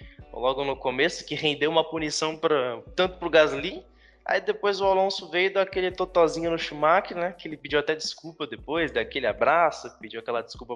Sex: male